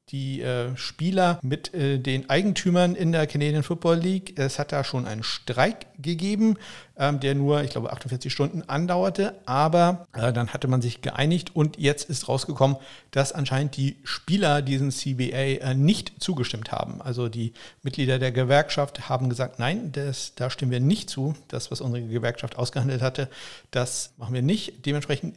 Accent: German